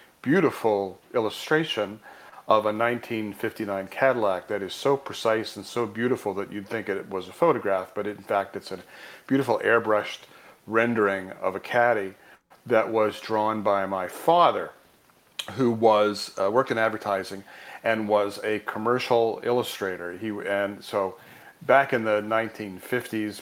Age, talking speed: 40-59, 140 wpm